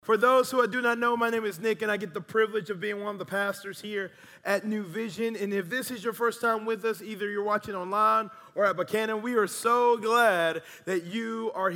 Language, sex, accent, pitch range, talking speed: English, male, American, 190-230 Hz, 250 wpm